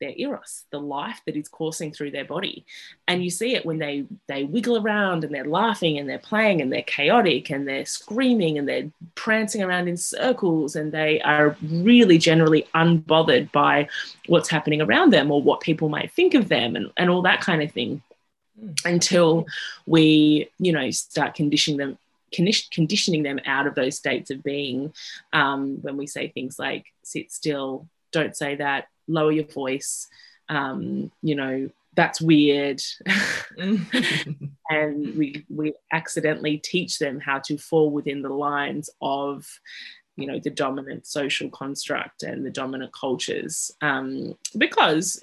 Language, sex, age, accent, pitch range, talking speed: English, female, 20-39, Australian, 140-170 Hz, 160 wpm